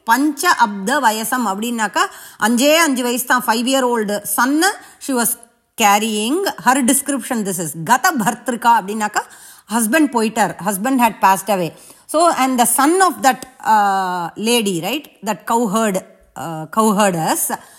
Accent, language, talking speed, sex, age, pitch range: Indian, English, 130 wpm, female, 20-39, 220-285 Hz